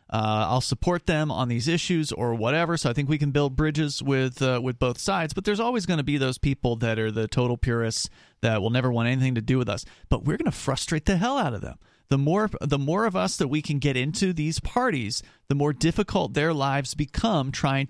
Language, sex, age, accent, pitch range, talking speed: English, male, 40-59, American, 125-185 Hz, 245 wpm